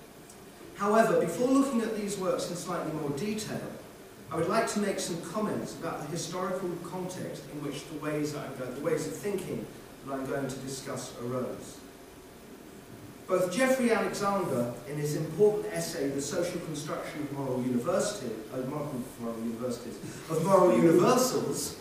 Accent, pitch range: British, 140-195 Hz